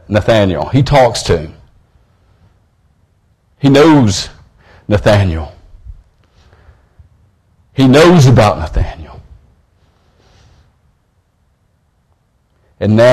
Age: 50-69